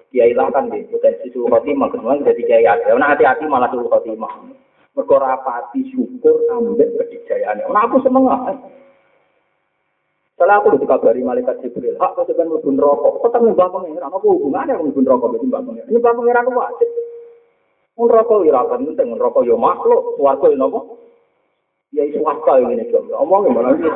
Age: 30-49